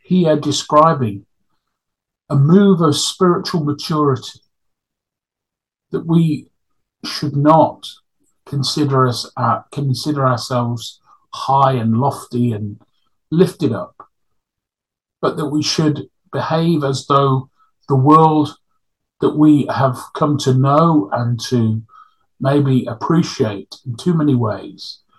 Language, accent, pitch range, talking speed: English, British, 125-155 Hz, 105 wpm